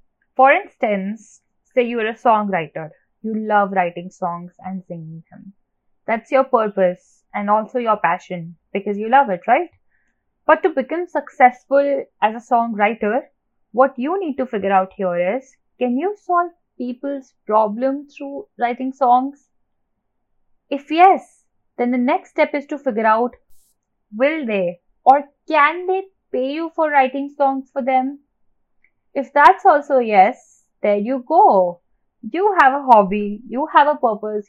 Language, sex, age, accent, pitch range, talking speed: English, female, 10-29, Indian, 205-275 Hz, 150 wpm